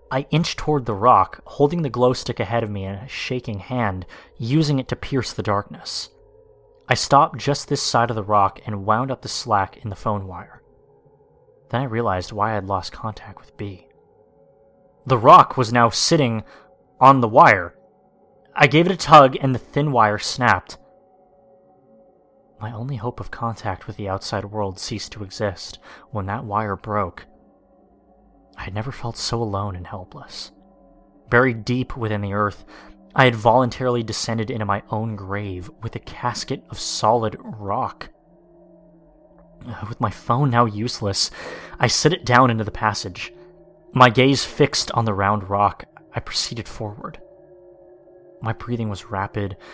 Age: 30-49